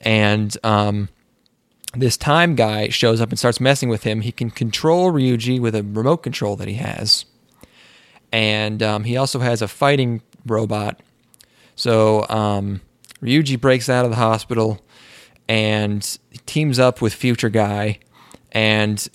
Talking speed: 145 wpm